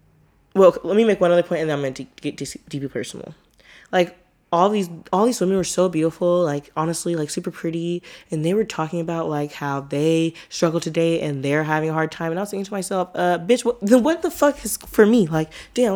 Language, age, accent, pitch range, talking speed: English, 20-39, American, 150-185 Hz, 235 wpm